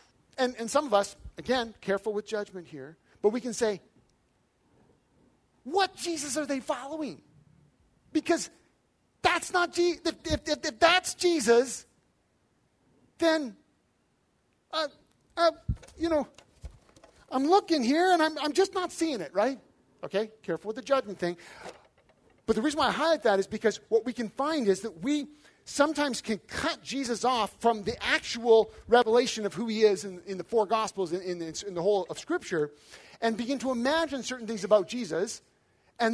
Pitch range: 200-295 Hz